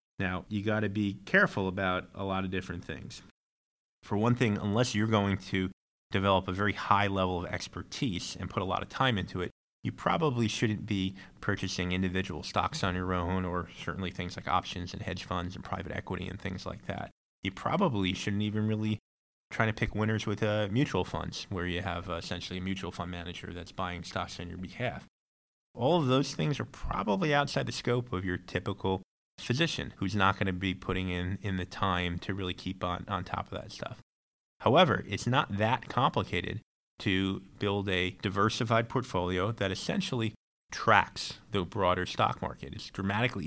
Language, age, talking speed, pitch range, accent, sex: English, 30-49, 190 wpm, 90-110 Hz, American, male